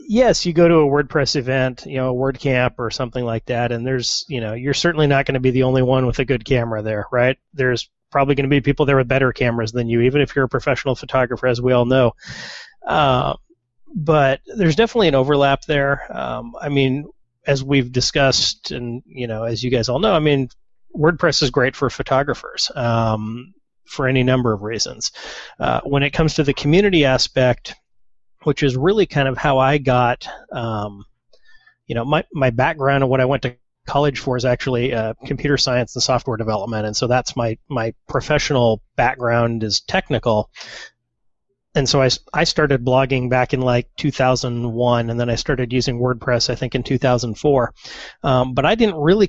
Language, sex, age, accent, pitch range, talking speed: English, male, 30-49, American, 120-140 Hz, 200 wpm